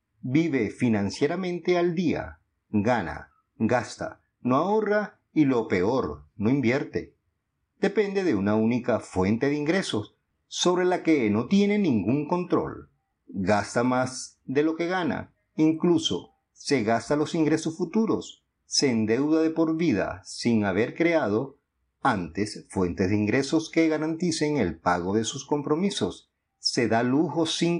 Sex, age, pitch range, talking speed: male, 50-69, 105-170 Hz, 135 wpm